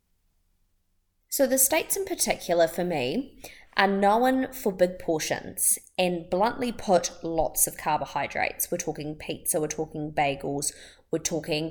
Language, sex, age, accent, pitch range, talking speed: English, female, 20-39, Australian, 155-185 Hz, 135 wpm